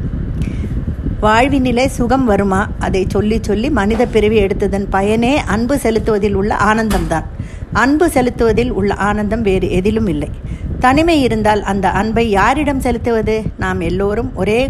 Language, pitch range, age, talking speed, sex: Tamil, 200-255 Hz, 50-69, 125 wpm, female